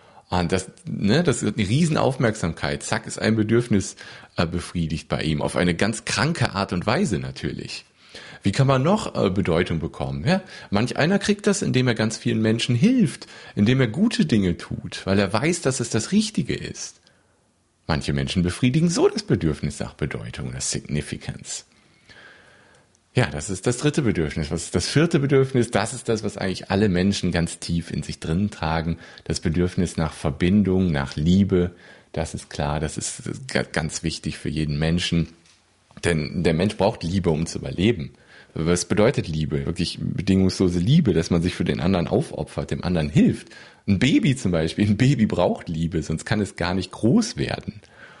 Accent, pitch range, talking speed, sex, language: German, 85-120 Hz, 180 wpm, male, German